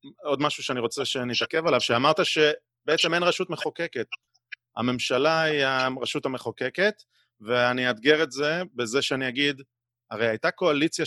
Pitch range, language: 120-155 Hz, Hebrew